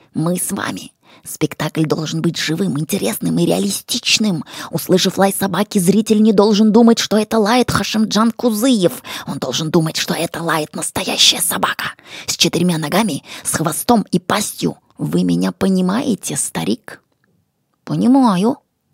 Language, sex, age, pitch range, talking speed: Russian, female, 20-39, 170-240 Hz, 135 wpm